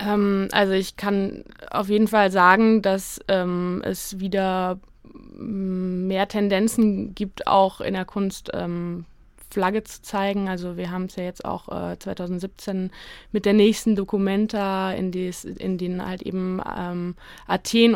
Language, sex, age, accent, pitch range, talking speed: German, female, 20-39, German, 180-200 Hz, 140 wpm